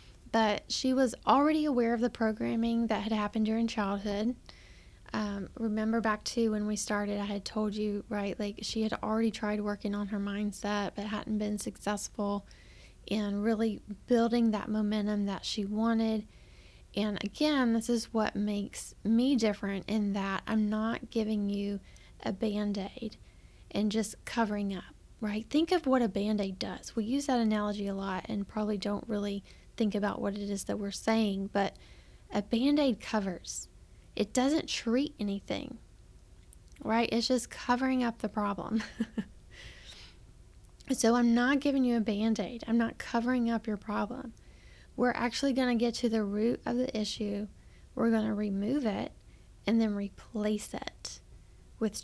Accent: American